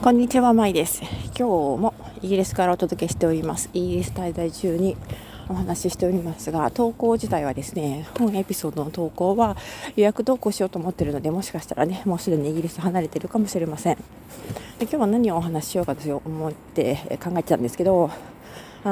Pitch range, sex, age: 160-210 Hz, female, 40-59